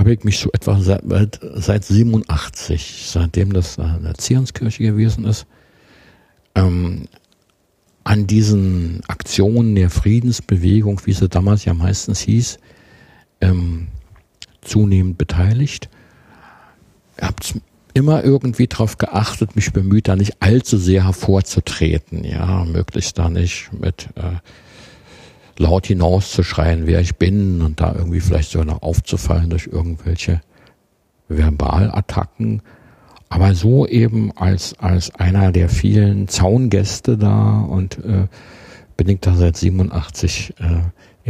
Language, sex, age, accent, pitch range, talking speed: German, male, 60-79, German, 90-105 Hz, 120 wpm